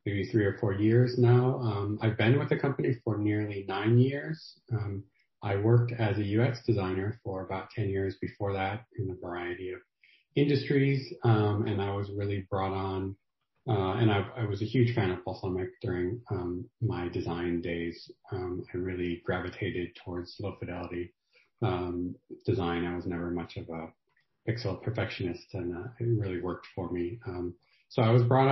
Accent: American